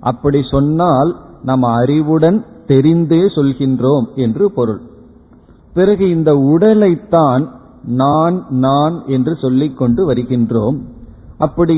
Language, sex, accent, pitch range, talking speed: Tamil, male, native, 125-155 Hz, 80 wpm